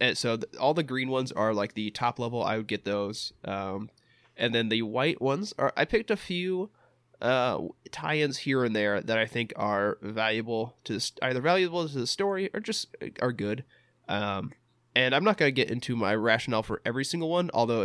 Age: 20-39